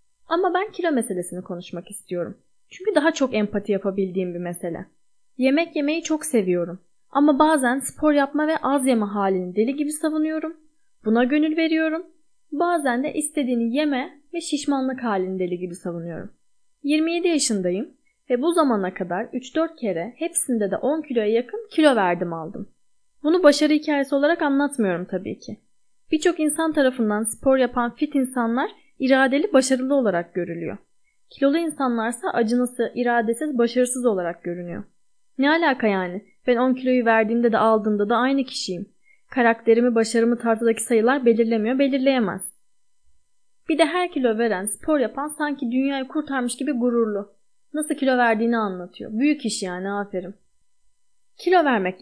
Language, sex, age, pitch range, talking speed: Turkish, female, 10-29, 215-295 Hz, 140 wpm